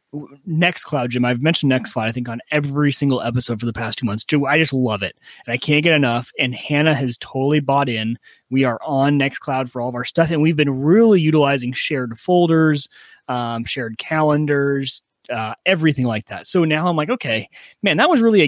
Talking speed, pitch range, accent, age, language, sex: 210 wpm, 130-155 Hz, American, 30-49, English, male